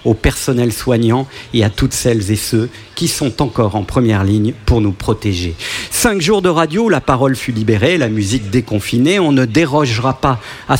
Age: 50-69